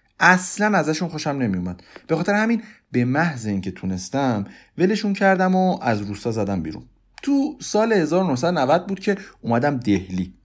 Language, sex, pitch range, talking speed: Persian, male, 110-185 Hz, 150 wpm